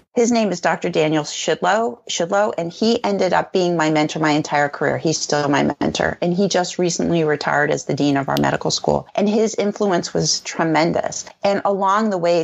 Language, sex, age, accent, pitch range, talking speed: English, female, 40-59, American, 165-225 Hz, 205 wpm